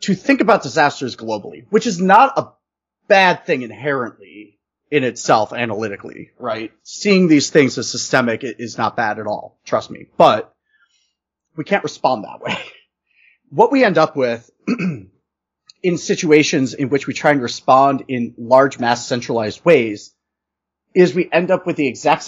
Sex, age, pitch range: male, 30-49, 125-180 Hz